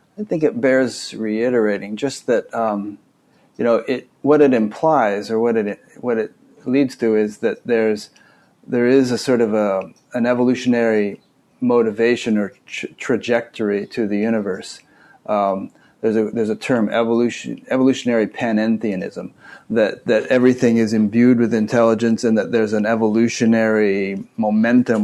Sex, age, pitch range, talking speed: male, 30-49, 105-120 Hz, 145 wpm